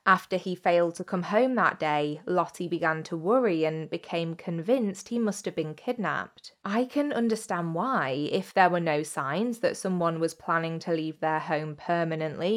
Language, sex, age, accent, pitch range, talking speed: English, female, 20-39, British, 160-195 Hz, 180 wpm